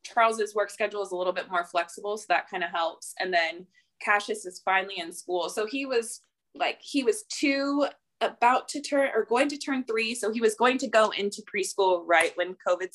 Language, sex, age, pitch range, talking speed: English, female, 20-39, 175-235 Hz, 220 wpm